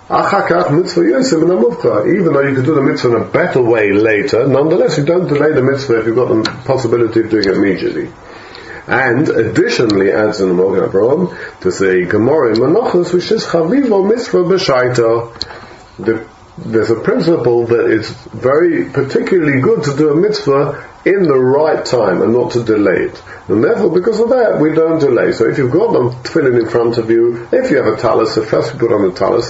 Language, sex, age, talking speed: English, male, 50-69, 195 wpm